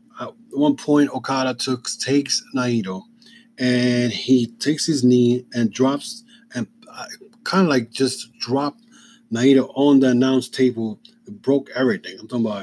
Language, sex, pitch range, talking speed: English, male, 125-155 Hz, 150 wpm